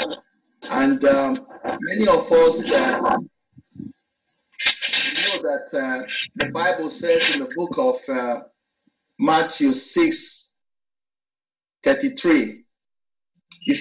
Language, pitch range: English, 185-270 Hz